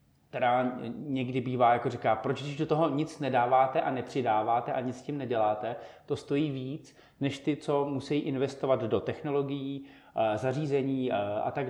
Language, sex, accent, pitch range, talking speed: Czech, male, native, 120-145 Hz, 160 wpm